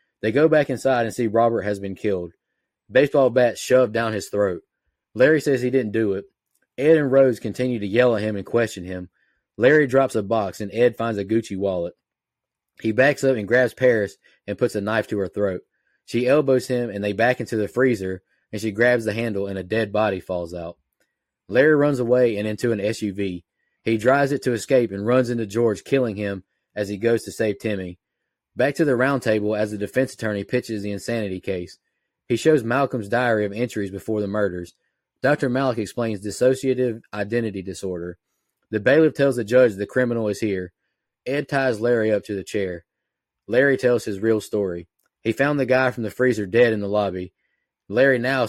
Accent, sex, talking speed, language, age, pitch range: American, male, 200 wpm, English, 20-39, 100-125 Hz